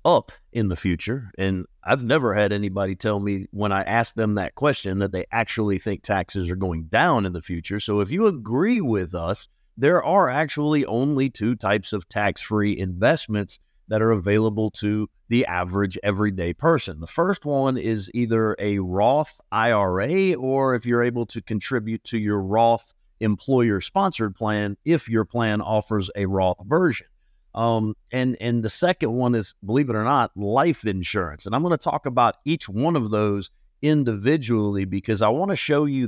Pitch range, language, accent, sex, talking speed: 100-130 Hz, English, American, male, 180 wpm